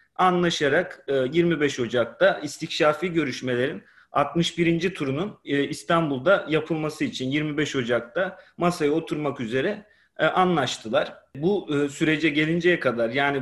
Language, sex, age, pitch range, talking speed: Turkish, male, 40-59, 135-165 Hz, 95 wpm